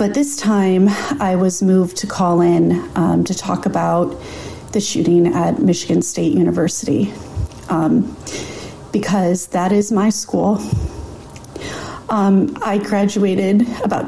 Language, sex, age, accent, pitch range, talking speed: English, female, 30-49, American, 180-225 Hz, 125 wpm